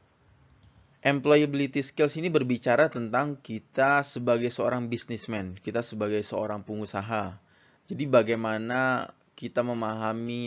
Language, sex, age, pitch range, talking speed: Indonesian, male, 20-39, 105-120 Hz, 95 wpm